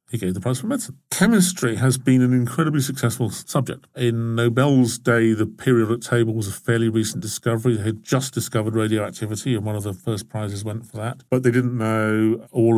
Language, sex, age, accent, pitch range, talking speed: English, male, 50-69, British, 110-130 Hz, 200 wpm